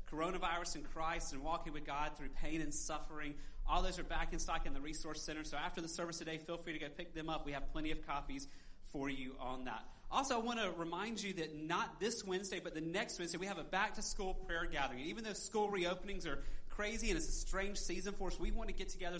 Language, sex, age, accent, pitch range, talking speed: English, male, 30-49, American, 155-190 Hz, 255 wpm